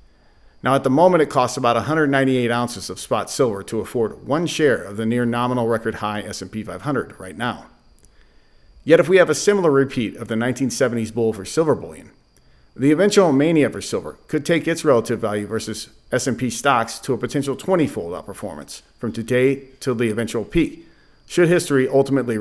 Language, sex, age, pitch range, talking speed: English, male, 50-69, 115-150 Hz, 180 wpm